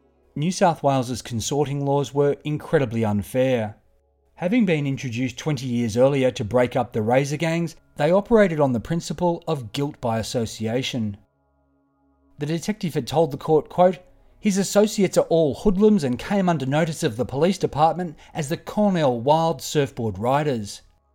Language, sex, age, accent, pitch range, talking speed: English, male, 40-59, Australian, 120-160 Hz, 155 wpm